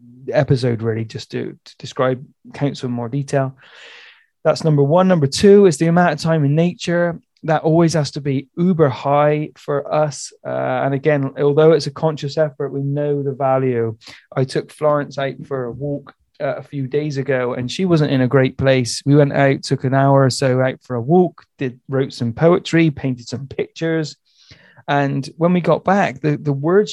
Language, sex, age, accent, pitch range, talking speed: English, male, 20-39, British, 130-160 Hz, 200 wpm